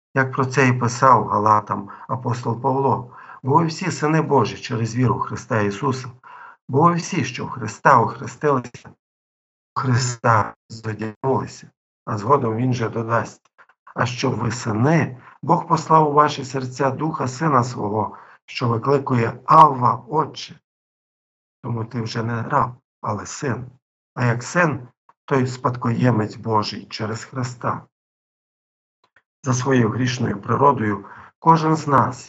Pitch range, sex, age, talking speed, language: 110-135 Hz, male, 50-69, 125 wpm, Ukrainian